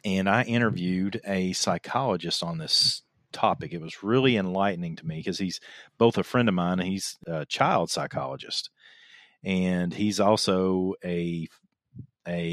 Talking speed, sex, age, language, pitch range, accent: 150 wpm, male, 40-59, English, 90-110 Hz, American